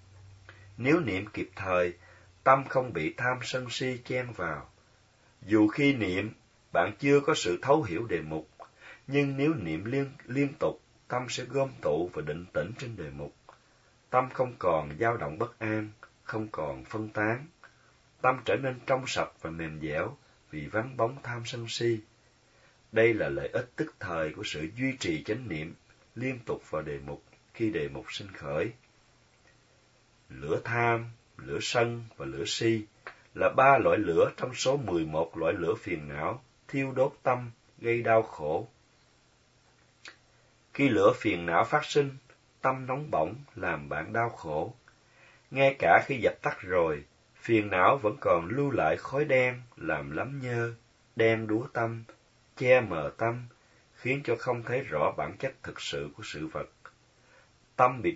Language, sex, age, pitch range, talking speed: Vietnamese, male, 30-49, 105-130 Hz, 165 wpm